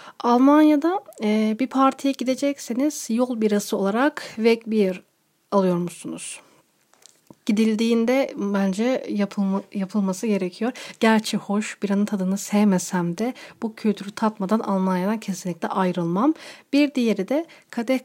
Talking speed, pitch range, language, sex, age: 105 wpm, 200-250 Hz, Turkish, female, 40-59